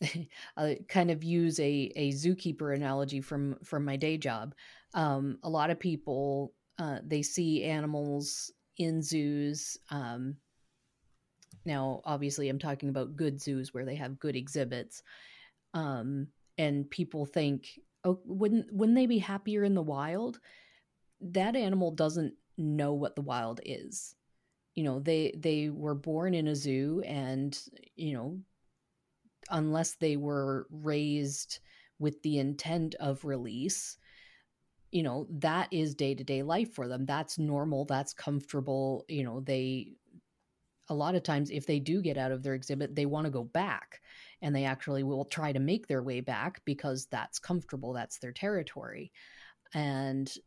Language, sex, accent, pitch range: English, female, American, 135-160 Hz